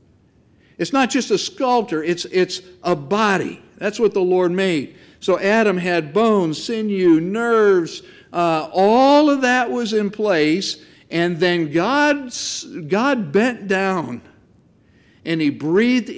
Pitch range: 145-200 Hz